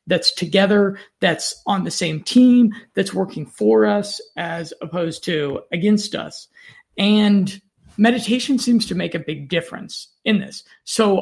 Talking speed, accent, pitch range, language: 145 wpm, American, 170-215 Hz, English